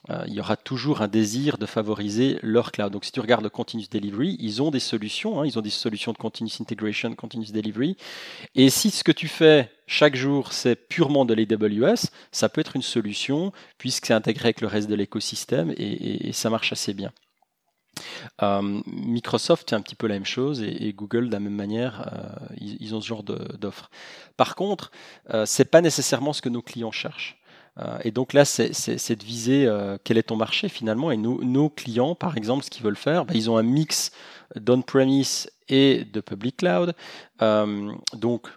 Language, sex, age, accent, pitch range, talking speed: French, male, 30-49, French, 110-140 Hz, 210 wpm